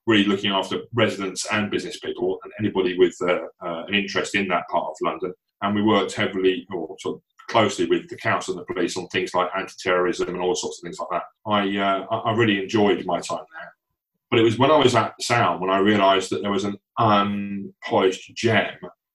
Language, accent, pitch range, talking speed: English, British, 95-115 Hz, 215 wpm